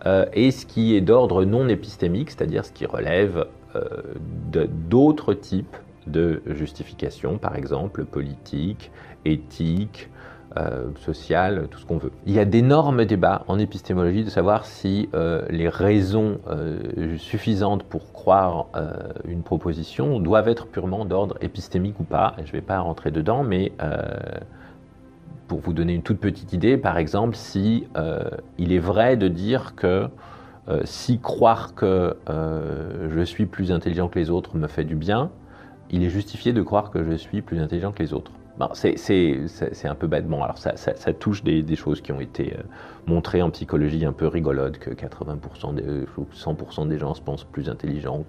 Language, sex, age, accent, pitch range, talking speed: French, male, 40-59, French, 80-105 Hz, 180 wpm